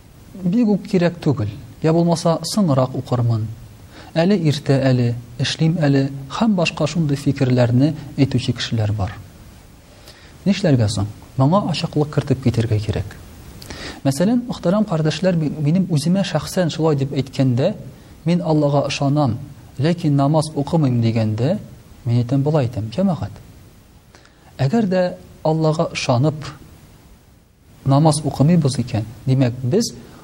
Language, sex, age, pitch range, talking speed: Russian, male, 40-59, 120-160 Hz, 100 wpm